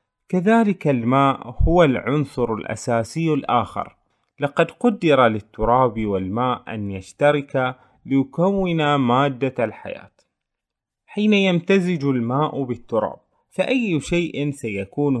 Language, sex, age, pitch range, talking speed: Arabic, male, 30-49, 115-155 Hz, 85 wpm